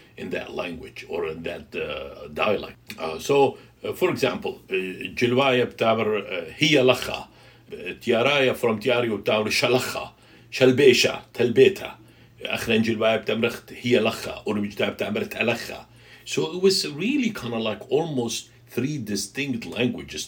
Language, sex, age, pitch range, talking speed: English, male, 60-79, 105-130 Hz, 130 wpm